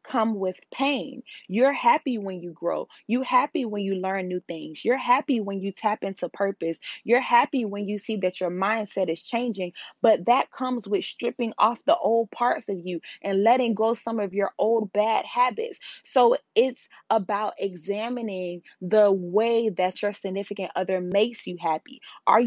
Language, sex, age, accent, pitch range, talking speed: English, female, 20-39, American, 195-230 Hz, 175 wpm